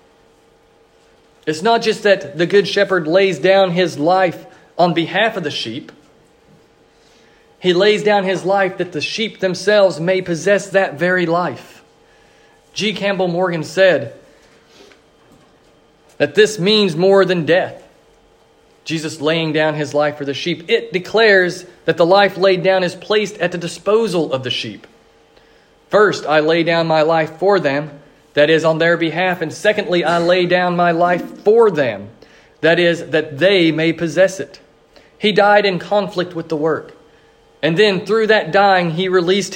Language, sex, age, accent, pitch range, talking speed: English, male, 40-59, American, 160-195 Hz, 160 wpm